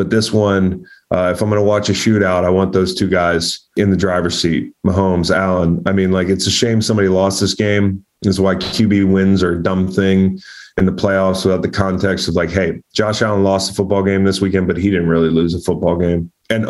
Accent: American